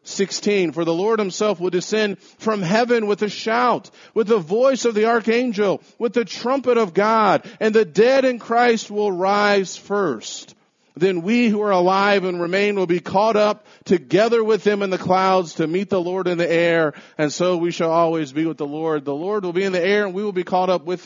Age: 40-59